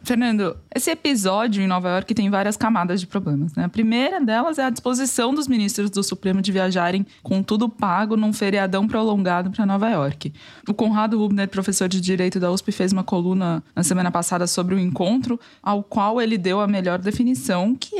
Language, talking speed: Portuguese, 195 wpm